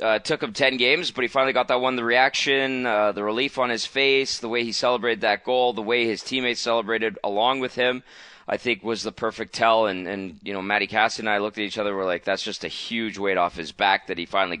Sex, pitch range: male, 100-125 Hz